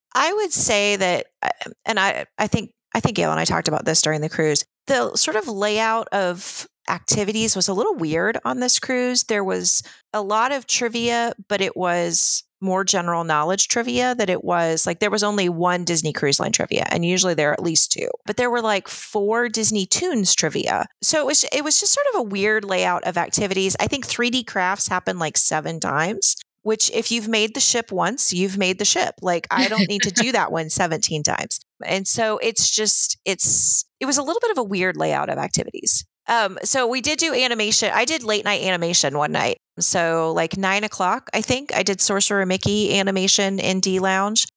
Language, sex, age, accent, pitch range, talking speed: English, female, 30-49, American, 175-225 Hz, 210 wpm